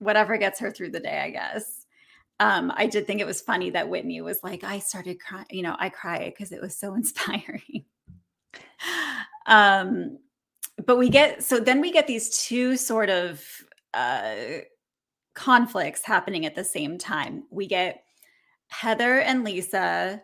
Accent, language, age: American, English, 20-39